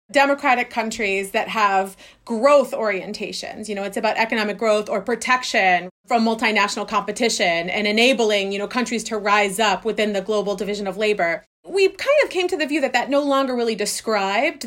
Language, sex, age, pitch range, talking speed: English, female, 30-49, 200-255 Hz, 180 wpm